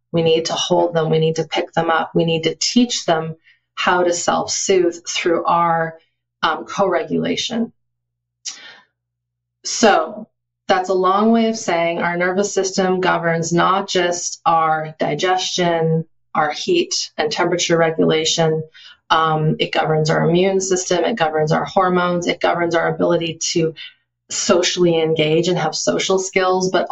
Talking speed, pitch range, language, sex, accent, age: 145 wpm, 155-180 Hz, English, female, American, 30-49